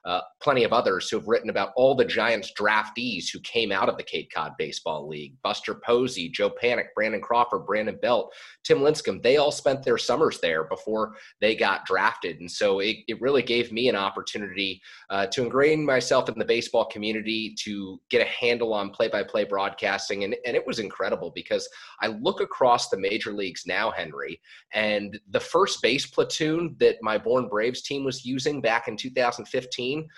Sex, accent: male, American